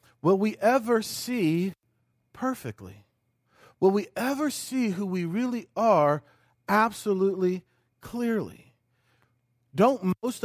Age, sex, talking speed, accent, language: 40-59, male, 100 wpm, American, English